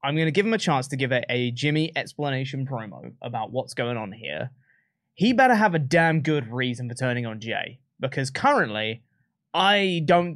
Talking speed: 195 wpm